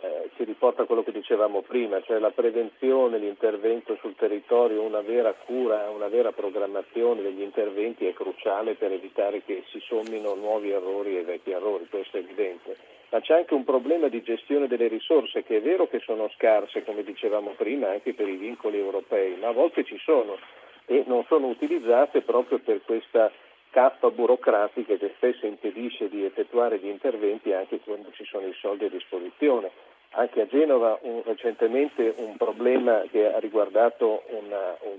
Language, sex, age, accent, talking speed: Italian, male, 50-69, native, 170 wpm